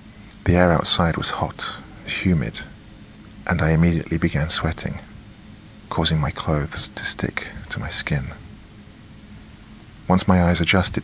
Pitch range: 80-105 Hz